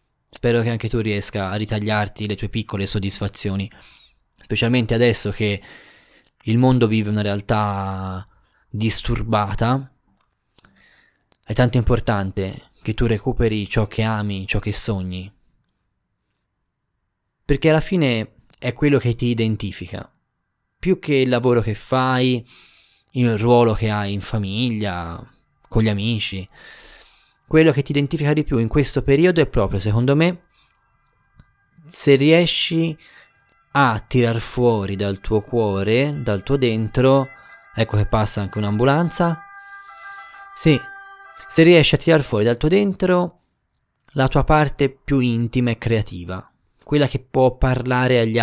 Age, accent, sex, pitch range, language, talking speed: 20-39, native, male, 105-135 Hz, Italian, 130 wpm